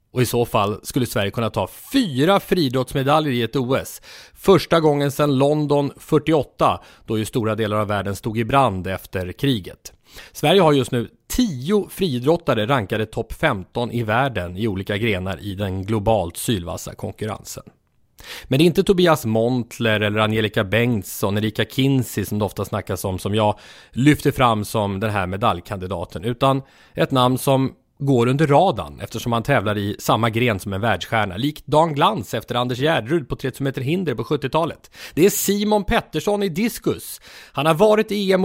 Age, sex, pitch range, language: 30-49, male, 110-150 Hz, English